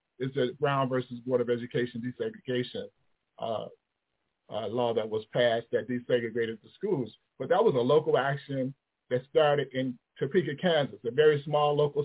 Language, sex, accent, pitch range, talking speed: English, male, American, 125-155 Hz, 165 wpm